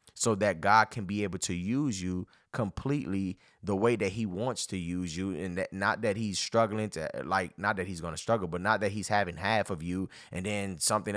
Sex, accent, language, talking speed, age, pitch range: male, American, English, 230 wpm, 20-39, 90-105 Hz